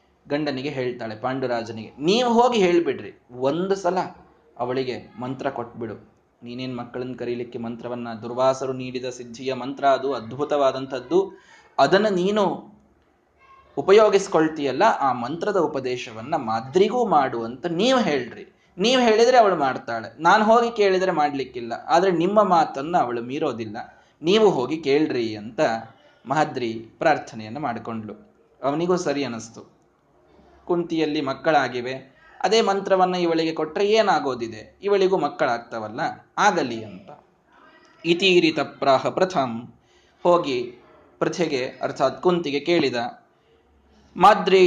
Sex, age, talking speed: male, 20-39, 100 wpm